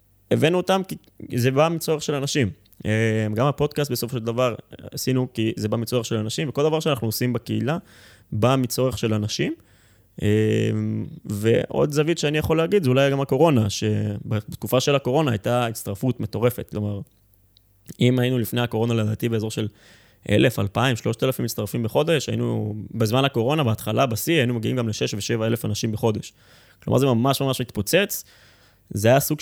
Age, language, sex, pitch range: 20-39, Hebrew, male, 105-130 Hz